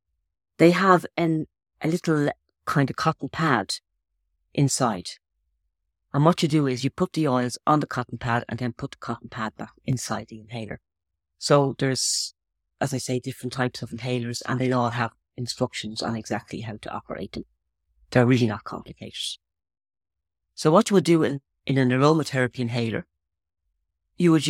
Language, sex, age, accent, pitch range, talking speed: English, female, 40-59, British, 90-140 Hz, 170 wpm